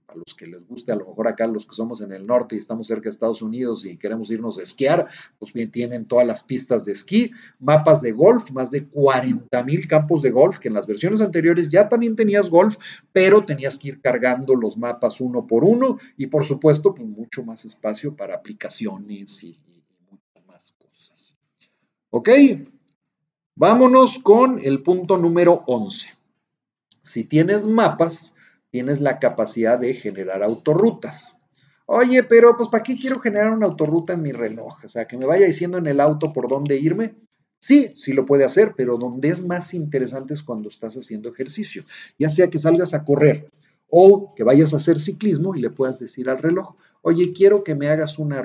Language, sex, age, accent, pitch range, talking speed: Spanish, male, 40-59, Mexican, 125-195 Hz, 190 wpm